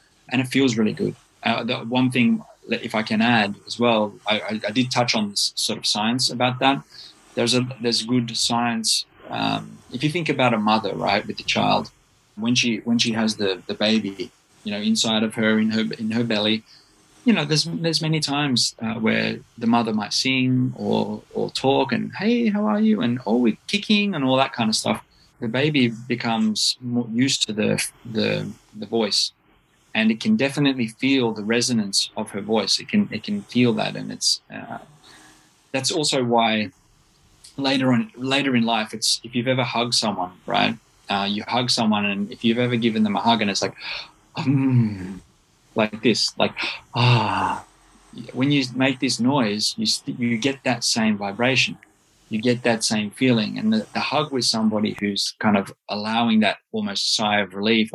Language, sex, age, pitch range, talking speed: English, male, 20-39, 110-135 Hz, 195 wpm